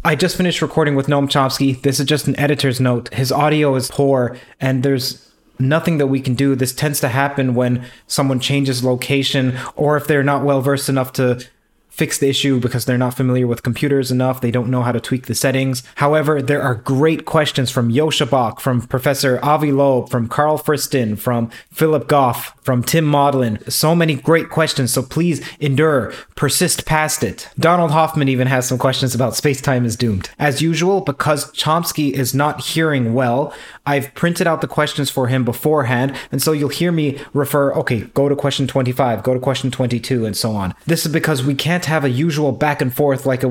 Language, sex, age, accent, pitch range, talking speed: English, male, 20-39, American, 130-150 Hz, 200 wpm